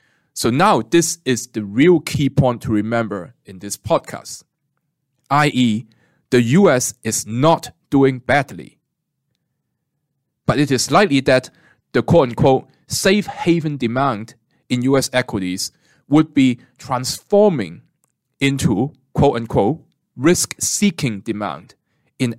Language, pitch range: English, 120-155 Hz